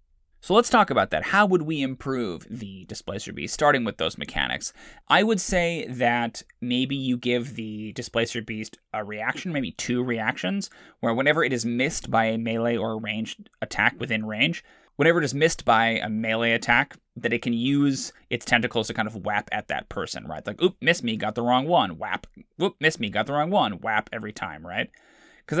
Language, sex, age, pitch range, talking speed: English, male, 20-39, 110-140 Hz, 205 wpm